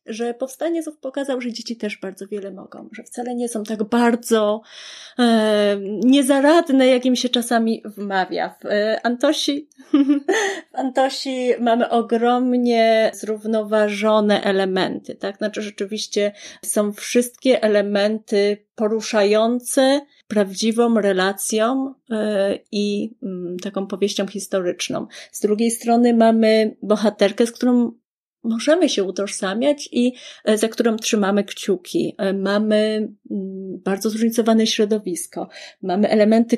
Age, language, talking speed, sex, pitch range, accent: 30-49, Polish, 110 wpm, female, 200-250 Hz, native